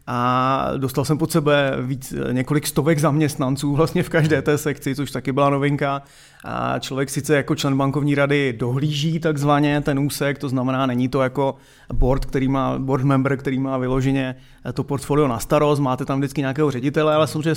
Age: 30-49